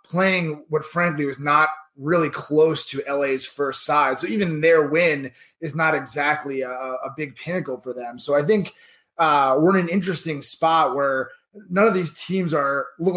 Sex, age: male, 20-39